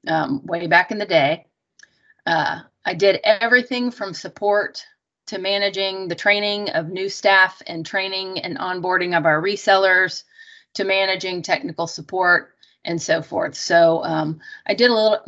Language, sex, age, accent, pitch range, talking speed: English, female, 30-49, American, 170-205 Hz, 155 wpm